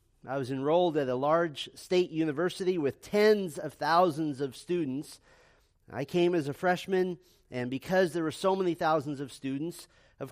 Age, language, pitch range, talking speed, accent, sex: 40-59, English, 140-180 Hz, 170 wpm, American, male